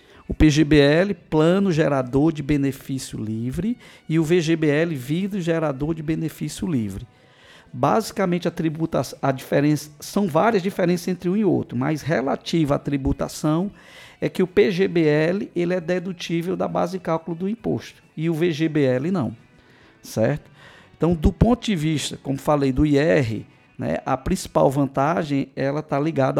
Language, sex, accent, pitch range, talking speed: Portuguese, male, Brazilian, 150-185 Hz, 145 wpm